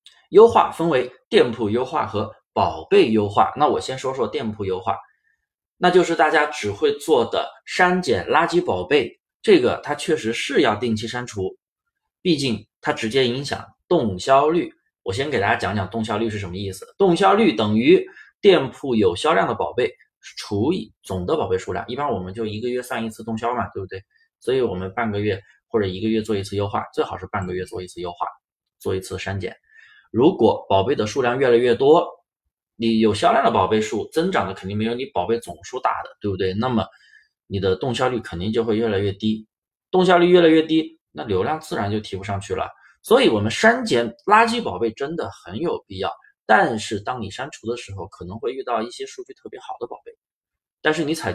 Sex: male